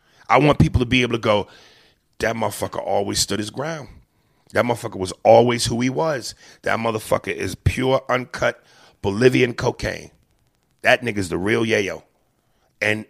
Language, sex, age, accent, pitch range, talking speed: English, male, 30-49, American, 110-140 Hz, 155 wpm